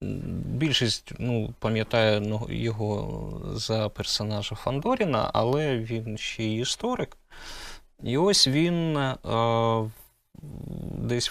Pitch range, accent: 110-155 Hz, native